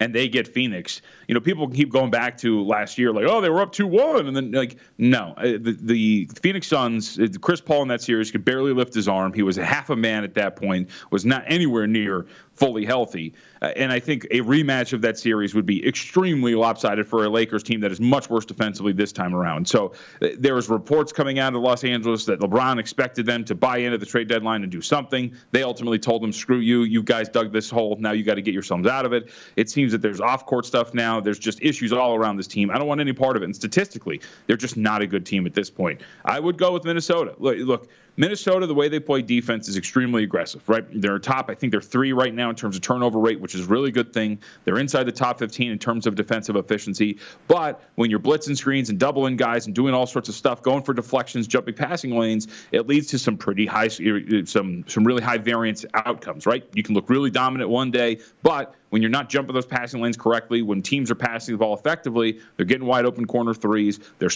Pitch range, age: 110-130 Hz, 30-49